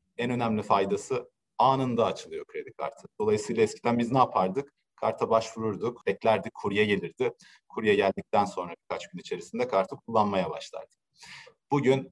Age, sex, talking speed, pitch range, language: 40-59, male, 135 wpm, 100-155 Hz, Turkish